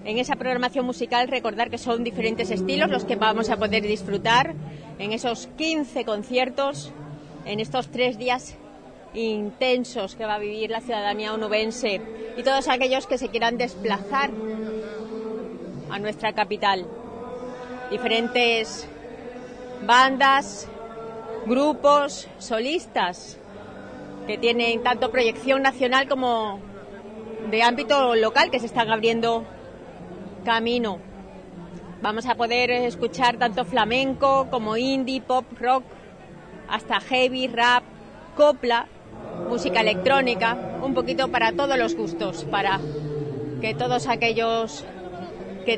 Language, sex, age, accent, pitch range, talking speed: Spanish, female, 30-49, Spanish, 215-255 Hz, 115 wpm